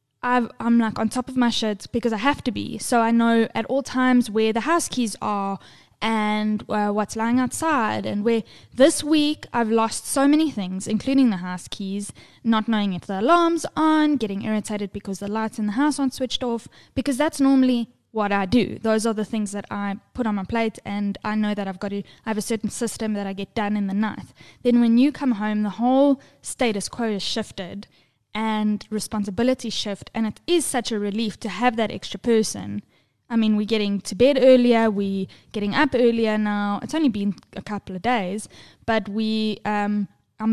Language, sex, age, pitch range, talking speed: English, female, 10-29, 205-250 Hz, 210 wpm